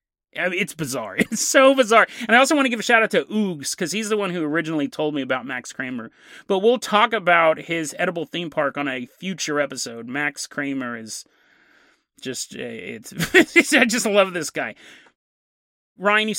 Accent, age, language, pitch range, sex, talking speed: American, 30-49, English, 145-225 Hz, male, 190 wpm